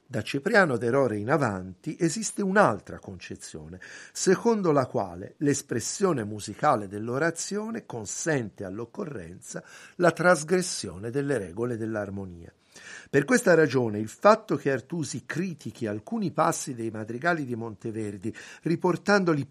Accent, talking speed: native, 110 wpm